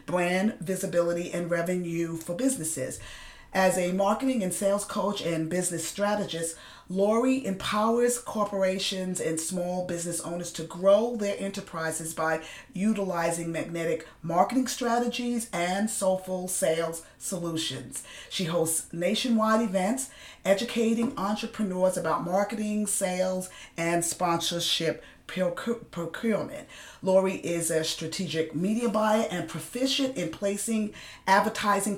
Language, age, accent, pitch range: English, 40-59, American, 170-205 Hz